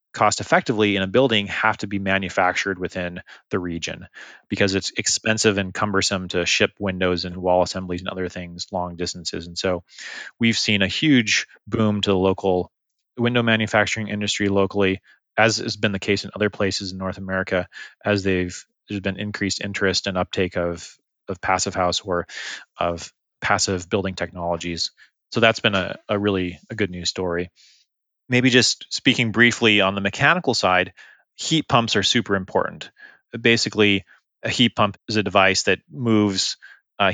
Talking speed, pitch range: 165 wpm, 95-110 Hz